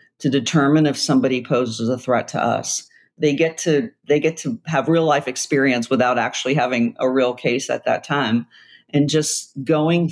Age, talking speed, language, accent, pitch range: 50-69, 185 wpm, English, American, 130-155 Hz